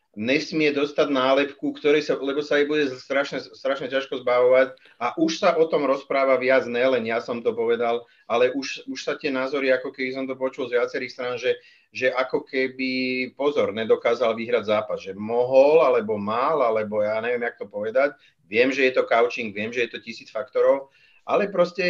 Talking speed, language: 195 wpm, Czech